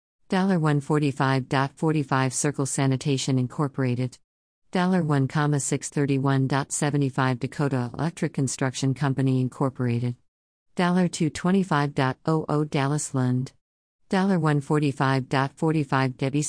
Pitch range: 130-155 Hz